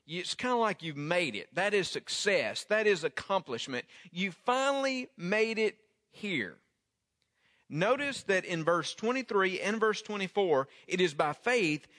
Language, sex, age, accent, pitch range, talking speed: English, male, 40-59, American, 170-220 Hz, 150 wpm